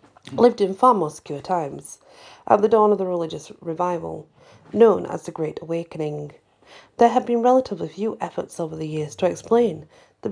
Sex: female